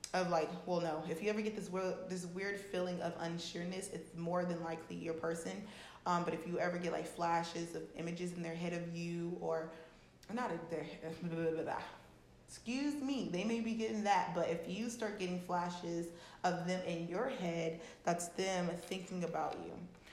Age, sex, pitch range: 20-39, female, 165-180 Hz